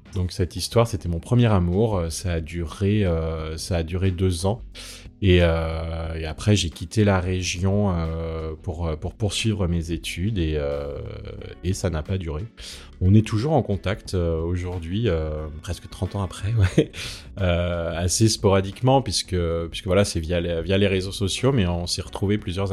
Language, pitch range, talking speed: French, 85-105 Hz, 160 wpm